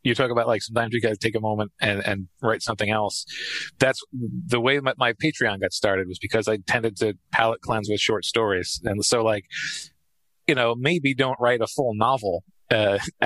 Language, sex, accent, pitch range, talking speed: English, male, American, 105-130 Hz, 205 wpm